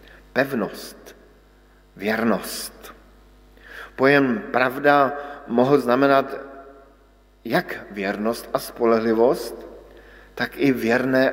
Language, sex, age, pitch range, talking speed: Slovak, male, 50-69, 105-135 Hz, 70 wpm